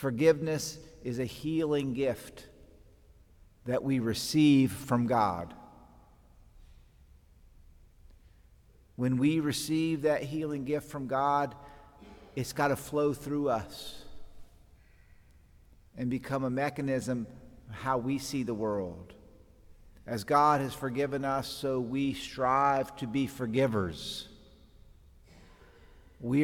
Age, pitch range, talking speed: 50-69, 100-145 Hz, 105 wpm